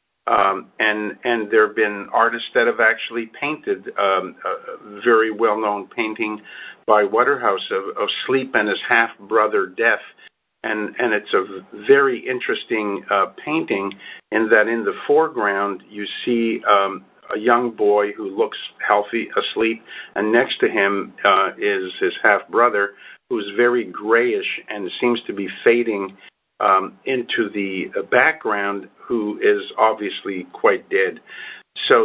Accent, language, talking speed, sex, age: American, English, 145 wpm, male, 50-69